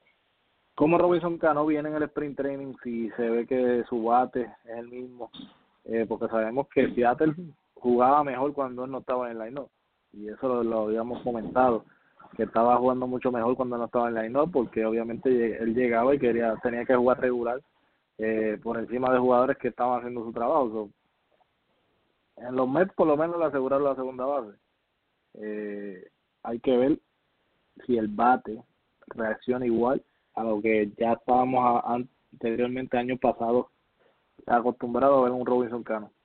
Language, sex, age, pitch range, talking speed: English, male, 20-39, 115-130 Hz, 170 wpm